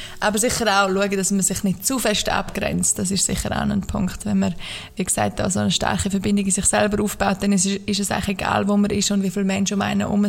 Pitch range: 185-200 Hz